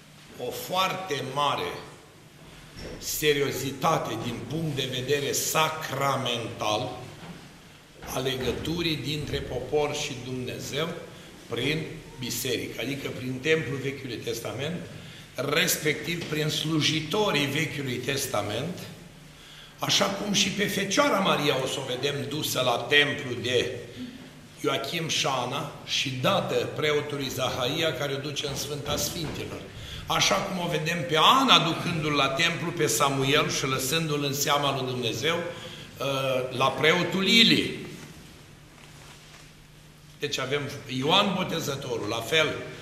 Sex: male